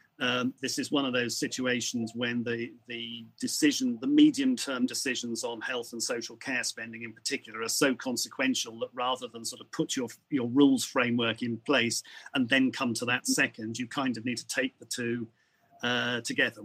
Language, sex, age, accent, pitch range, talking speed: English, male, 40-59, British, 115-140 Hz, 195 wpm